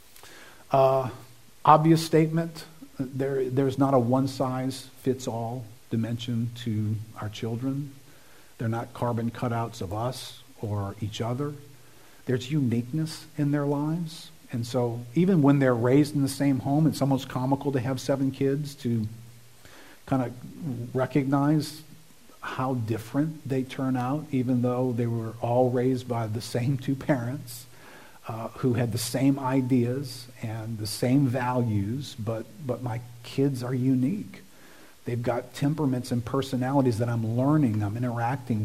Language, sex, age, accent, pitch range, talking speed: English, male, 50-69, American, 120-140 Hz, 145 wpm